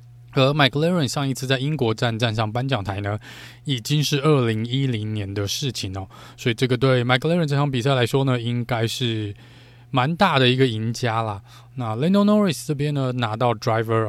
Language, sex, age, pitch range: Chinese, male, 20-39, 115-140 Hz